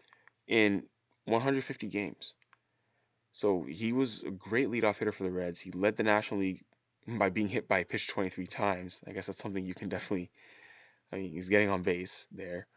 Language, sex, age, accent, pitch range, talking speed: English, male, 20-39, American, 90-105 Hz, 190 wpm